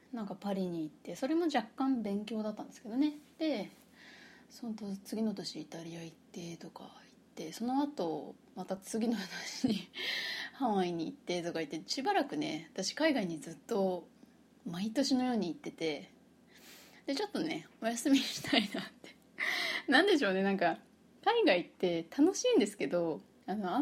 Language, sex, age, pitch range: Japanese, female, 20-39, 190-290 Hz